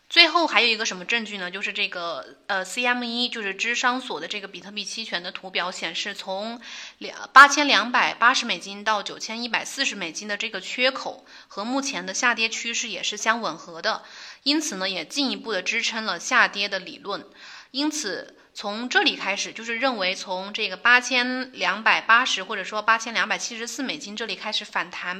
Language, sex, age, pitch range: Chinese, female, 20-39, 195-250 Hz